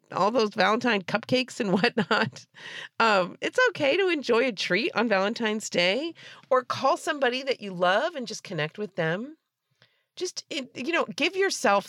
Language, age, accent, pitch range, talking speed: English, 40-59, American, 170-235 Hz, 160 wpm